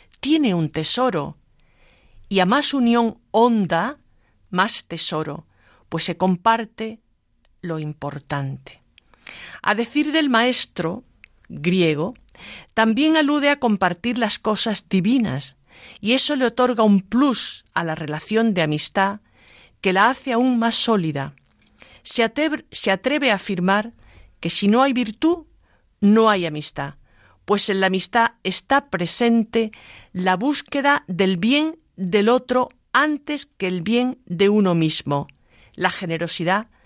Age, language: 50-69, Spanish